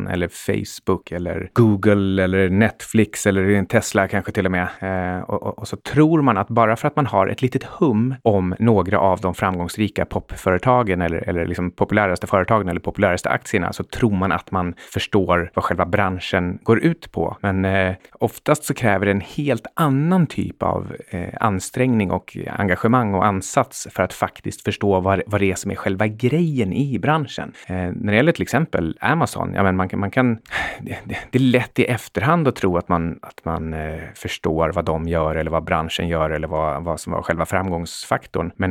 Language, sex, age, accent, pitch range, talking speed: Swedish, male, 30-49, native, 85-115 Hz, 190 wpm